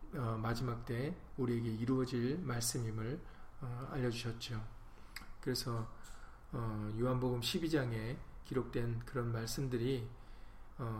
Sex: male